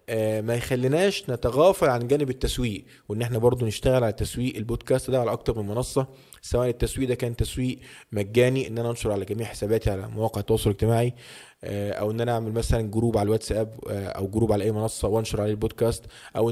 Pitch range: 110-135 Hz